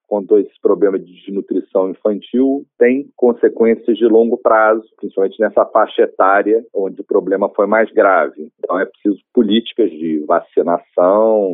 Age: 40-59